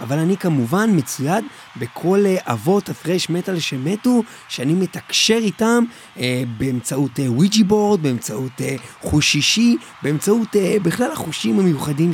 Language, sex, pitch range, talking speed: Hebrew, male, 145-210 Hz, 130 wpm